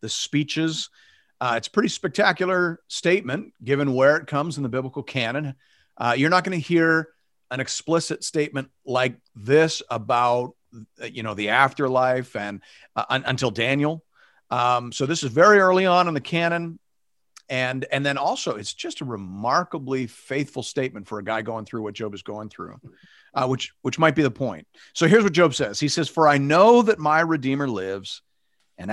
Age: 40-59